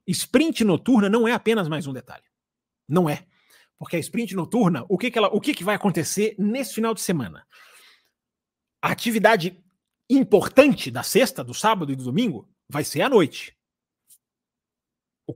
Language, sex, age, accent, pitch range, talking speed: Portuguese, male, 40-59, Brazilian, 140-225 Hz, 165 wpm